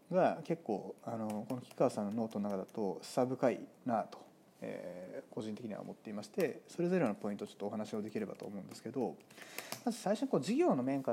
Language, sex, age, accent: Japanese, male, 30-49, native